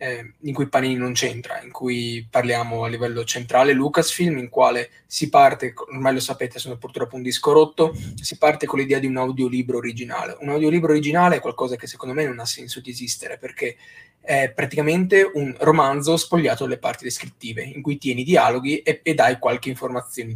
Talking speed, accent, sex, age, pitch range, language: 185 wpm, native, male, 20-39, 125-155 Hz, Italian